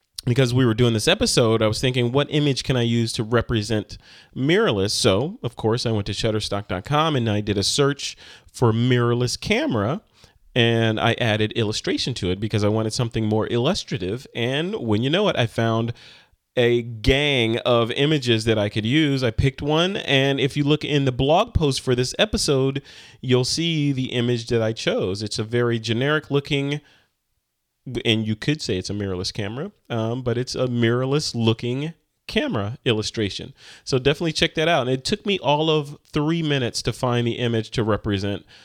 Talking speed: 185 wpm